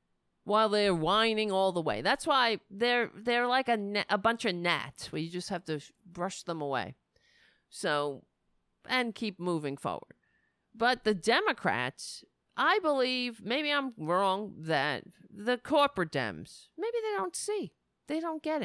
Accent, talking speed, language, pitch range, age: American, 155 wpm, English, 160-245 Hz, 40-59